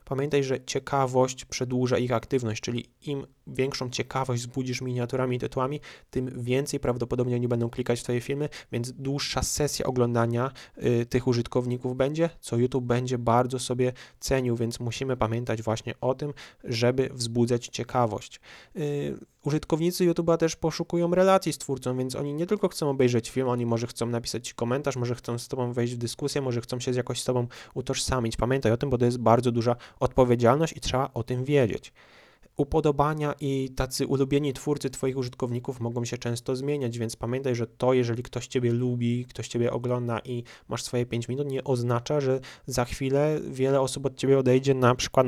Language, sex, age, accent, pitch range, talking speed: Polish, male, 20-39, native, 120-135 Hz, 175 wpm